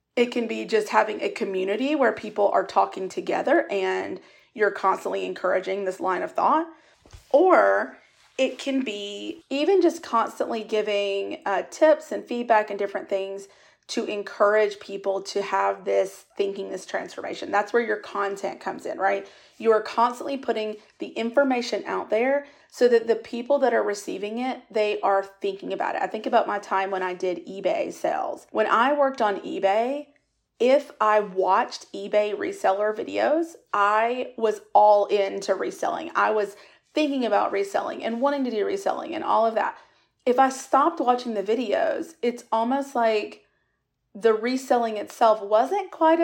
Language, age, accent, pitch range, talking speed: English, 30-49, American, 200-270 Hz, 165 wpm